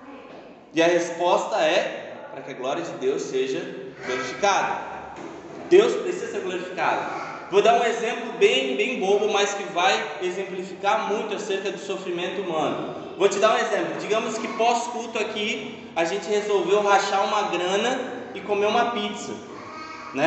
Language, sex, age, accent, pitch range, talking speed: Portuguese, male, 20-39, Brazilian, 190-270 Hz, 155 wpm